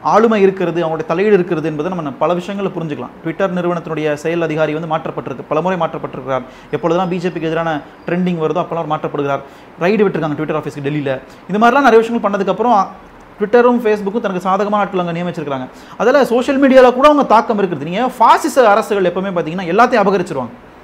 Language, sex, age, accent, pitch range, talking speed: Tamil, male, 30-49, native, 165-225 Hz, 160 wpm